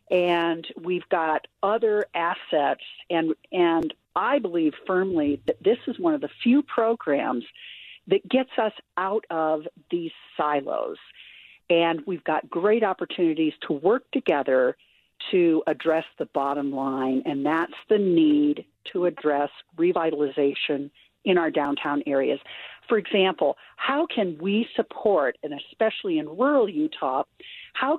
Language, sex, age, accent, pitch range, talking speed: English, female, 50-69, American, 155-250 Hz, 130 wpm